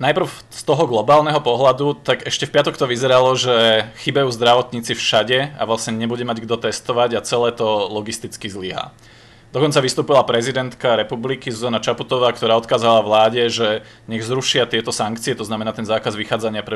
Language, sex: Czech, male